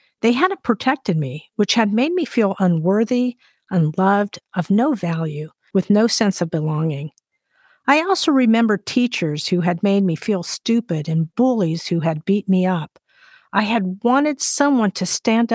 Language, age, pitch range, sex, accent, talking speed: English, 50-69, 170-230 Hz, female, American, 165 wpm